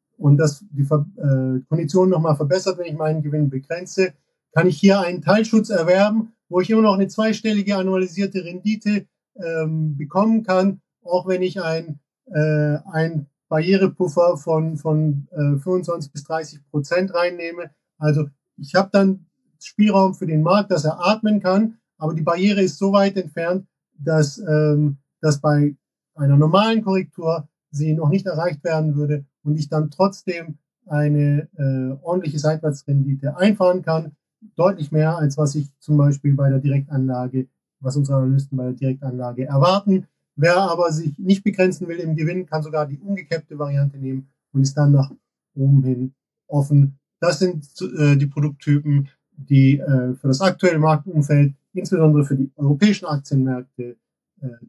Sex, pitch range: male, 145-185 Hz